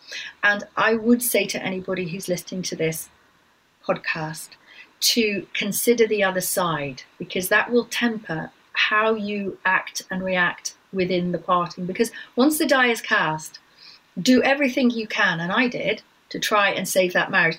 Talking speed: 160 wpm